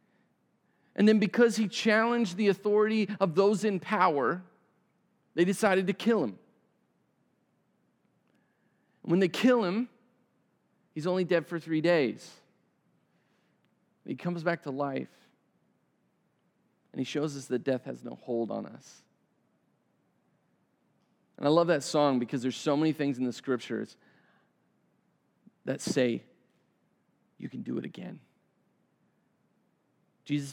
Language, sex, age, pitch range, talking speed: English, male, 40-59, 125-190 Hz, 125 wpm